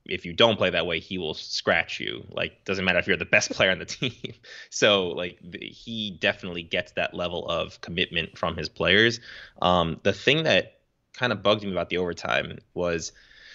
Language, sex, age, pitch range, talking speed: English, male, 20-39, 95-115 Hz, 205 wpm